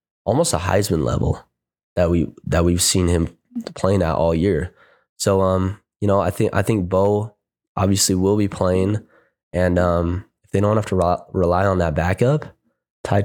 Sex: male